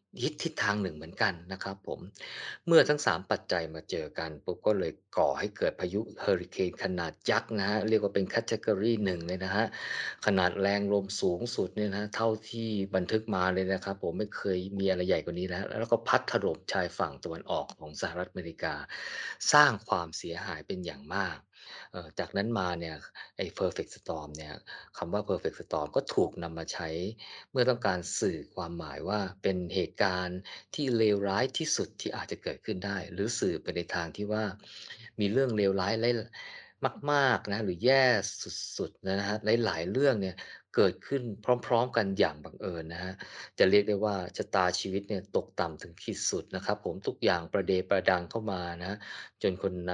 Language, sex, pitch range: Thai, male, 90-110 Hz